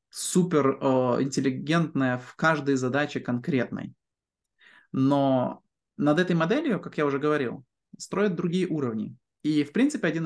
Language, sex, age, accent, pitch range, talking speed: Ukrainian, male, 20-39, native, 130-180 Hz, 130 wpm